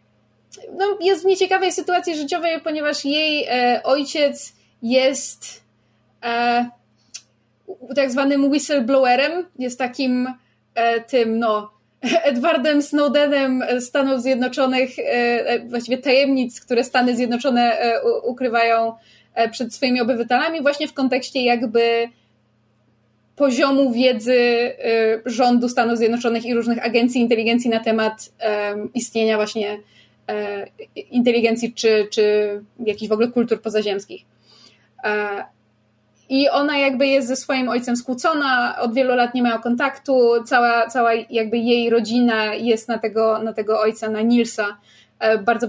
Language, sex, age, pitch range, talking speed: Polish, female, 20-39, 225-275 Hz, 120 wpm